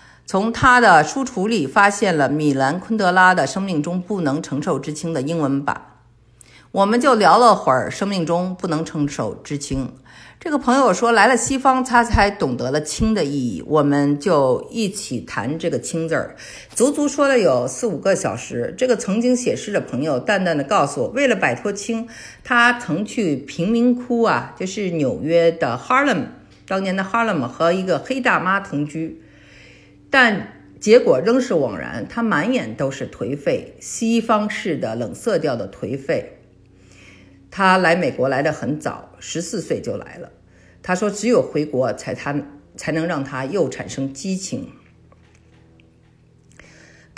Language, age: Chinese, 50-69